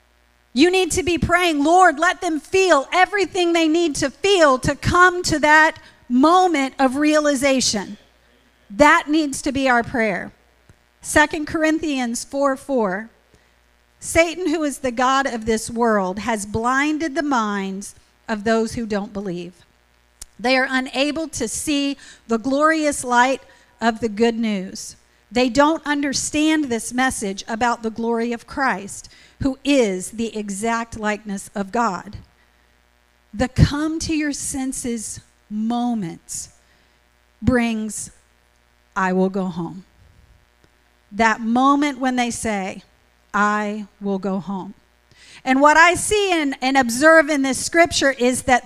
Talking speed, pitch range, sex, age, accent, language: 135 wpm, 200-295 Hz, female, 40-59, American, English